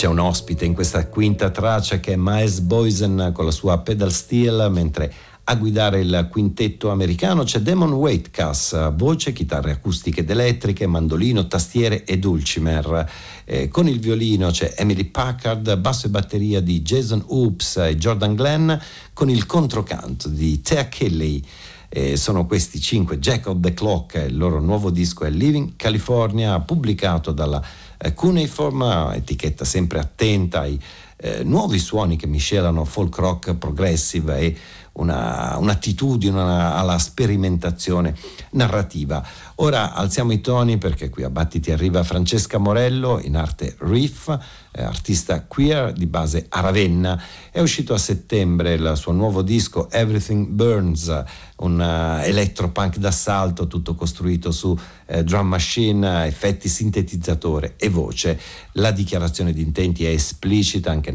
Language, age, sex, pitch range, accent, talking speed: Italian, 50-69, male, 85-110 Hz, native, 140 wpm